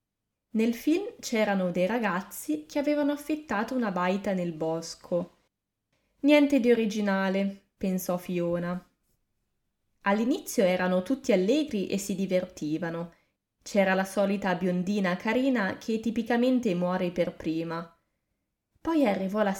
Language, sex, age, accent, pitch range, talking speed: Italian, female, 20-39, native, 180-230 Hz, 115 wpm